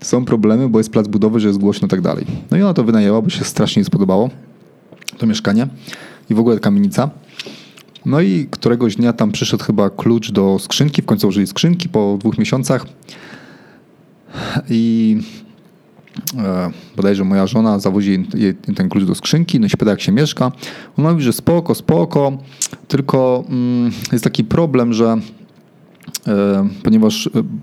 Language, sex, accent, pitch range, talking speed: Polish, male, native, 110-145 Hz, 155 wpm